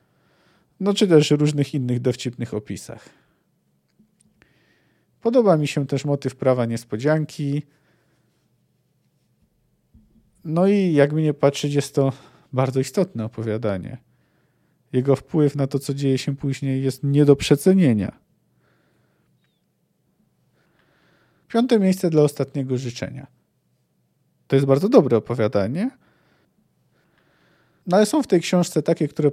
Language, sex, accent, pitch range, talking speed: Polish, male, native, 130-170 Hz, 110 wpm